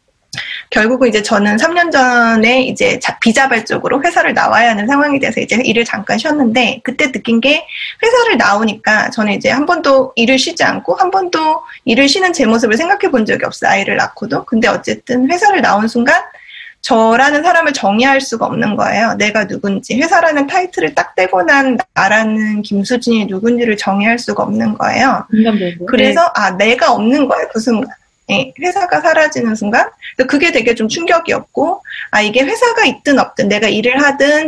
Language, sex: Korean, female